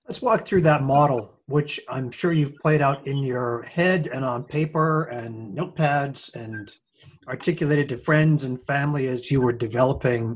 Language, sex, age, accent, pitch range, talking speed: English, male, 30-49, American, 125-155 Hz, 170 wpm